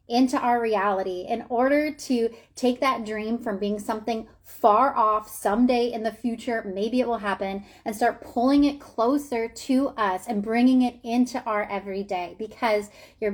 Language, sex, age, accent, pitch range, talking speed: English, female, 30-49, American, 210-255 Hz, 165 wpm